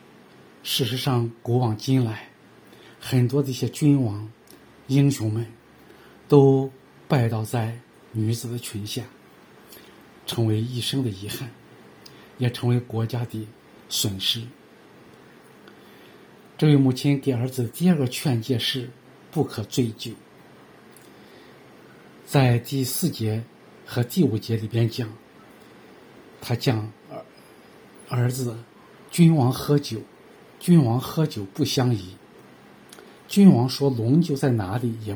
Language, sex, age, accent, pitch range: Chinese, male, 50-69, native, 115-140 Hz